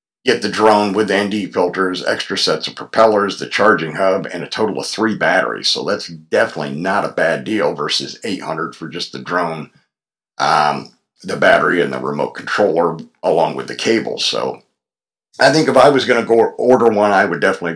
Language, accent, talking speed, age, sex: English, American, 195 wpm, 50-69, male